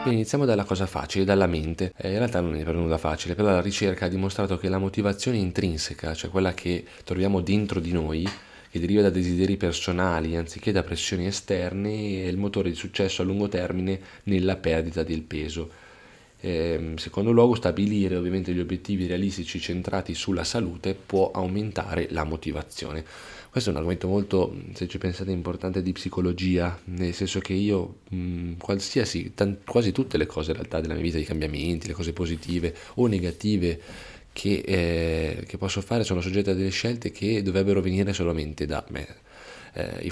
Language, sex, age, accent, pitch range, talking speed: Italian, male, 20-39, native, 85-100 Hz, 170 wpm